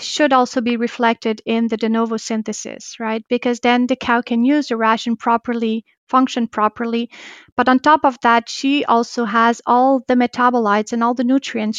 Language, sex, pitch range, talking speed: English, female, 230-260 Hz, 185 wpm